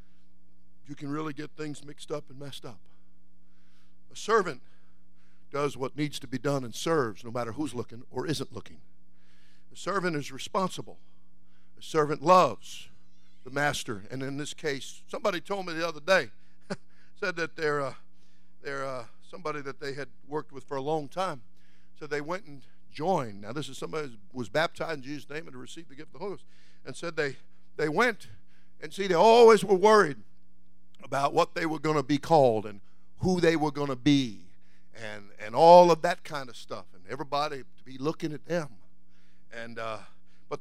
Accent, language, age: American, English, 60-79